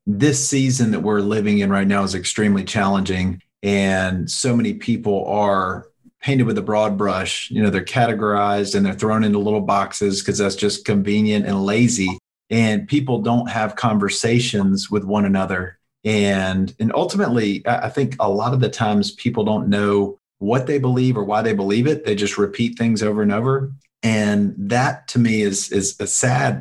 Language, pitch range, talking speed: English, 100-115 Hz, 185 wpm